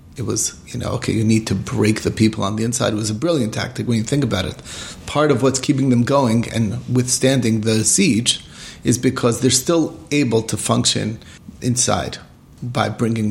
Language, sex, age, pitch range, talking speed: English, male, 30-49, 105-125 Hz, 200 wpm